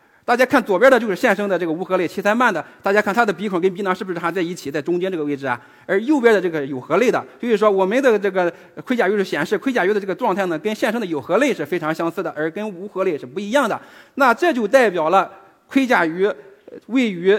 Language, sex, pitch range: Chinese, male, 165-220 Hz